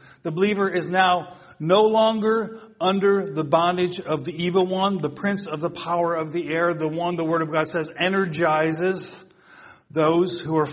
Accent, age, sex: American, 50-69, male